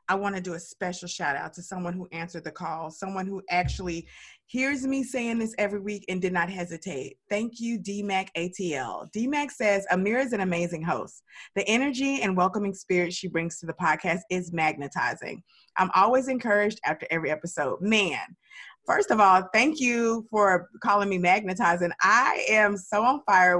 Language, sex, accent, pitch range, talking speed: English, female, American, 175-220 Hz, 180 wpm